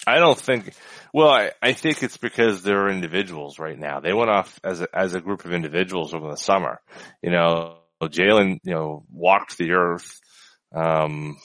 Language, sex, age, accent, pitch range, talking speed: English, male, 20-39, American, 85-105 Hz, 190 wpm